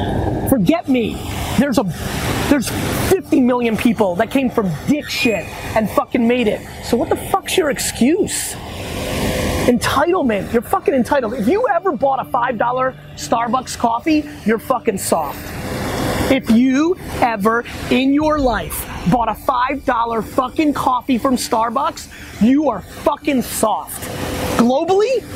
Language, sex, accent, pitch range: English, male, American, 245-315 Hz